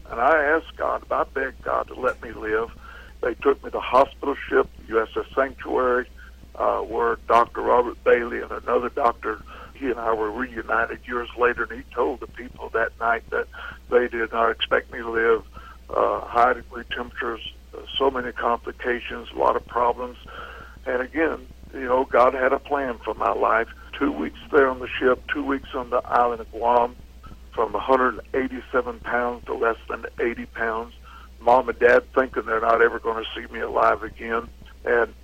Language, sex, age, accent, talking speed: English, male, 60-79, American, 185 wpm